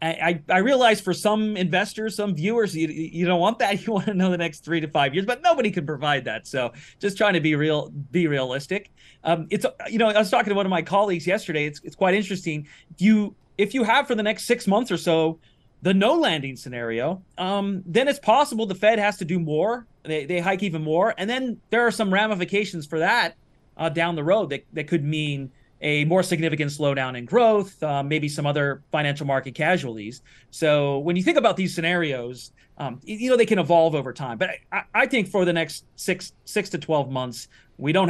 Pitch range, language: 145-200 Hz, English